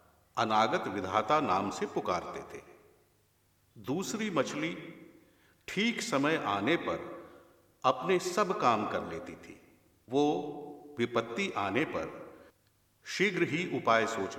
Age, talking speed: 50-69, 110 wpm